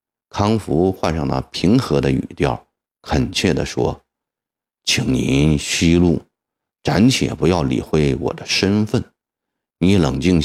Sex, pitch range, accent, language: male, 80-105 Hz, native, Chinese